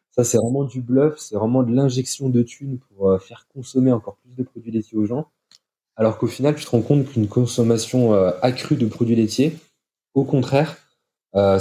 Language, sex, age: French, male, 20-39